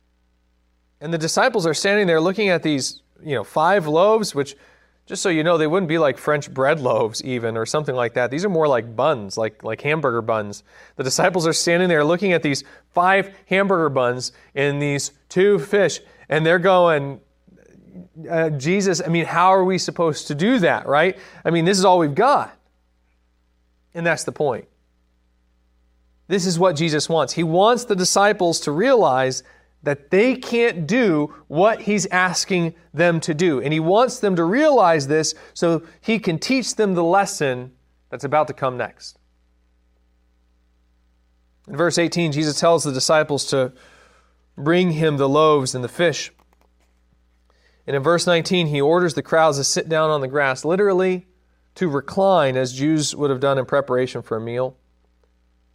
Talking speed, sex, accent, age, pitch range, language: 175 wpm, male, American, 30-49, 110-175 Hz, English